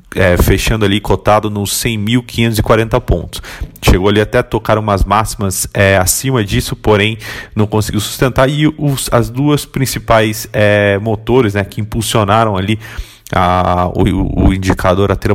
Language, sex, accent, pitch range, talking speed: Portuguese, male, Brazilian, 100-115 Hz, 130 wpm